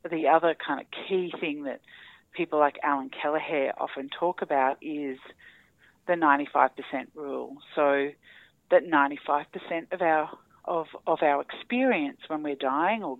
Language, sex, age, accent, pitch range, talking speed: English, female, 40-59, Australian, 150-195 Hz, 160 wpm